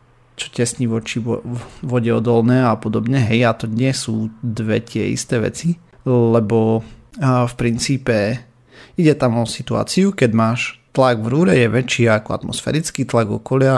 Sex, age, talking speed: male, 30-49, 155 wpm